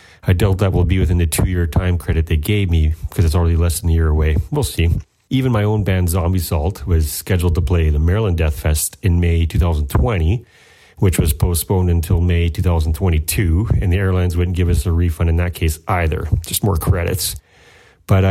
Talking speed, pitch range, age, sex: 205 wpm, 85-110 Hz, 40-59, male